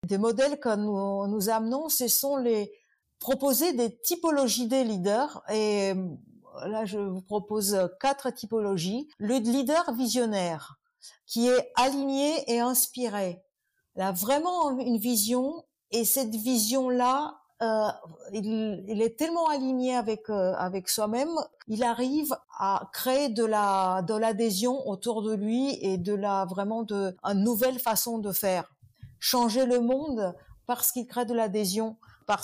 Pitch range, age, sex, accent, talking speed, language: 200-255 Hz, 50-69, female, French, 140 wpm, French